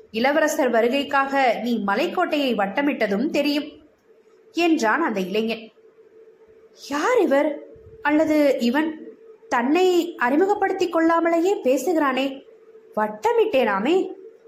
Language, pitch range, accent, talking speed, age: Tamil, 230-370 Hz, native, 75 wpm, 20-39